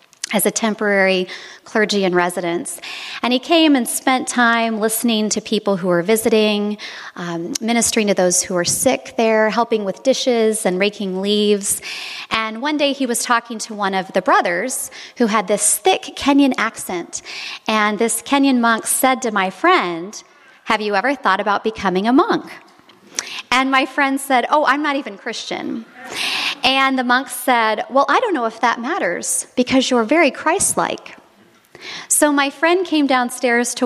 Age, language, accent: 30-49, English, American